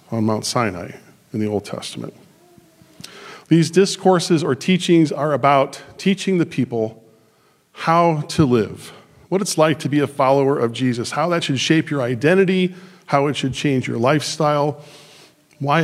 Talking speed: 155 wpm